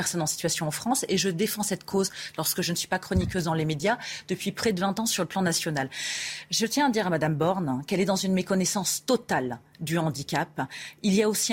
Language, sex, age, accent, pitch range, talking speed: French, female, 30-49, French, 155-205 Hz, 240 wpm